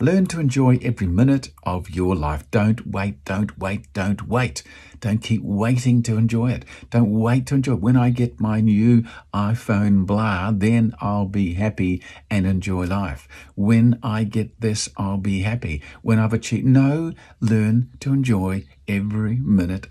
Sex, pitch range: male, 95-125 Hz